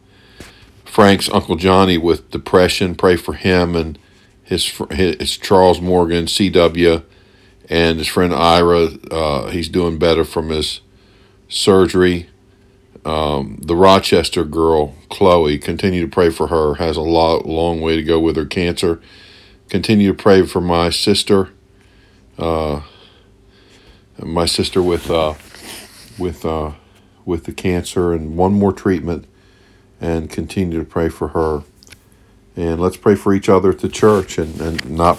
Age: 50-69